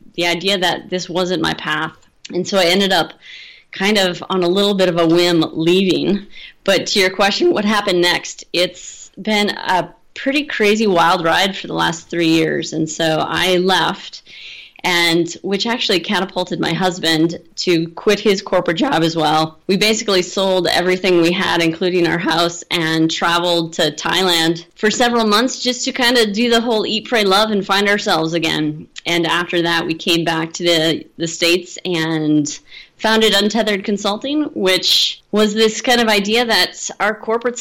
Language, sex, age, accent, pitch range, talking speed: English, female, 20-39, American, 170-205 Hz, 175 wpm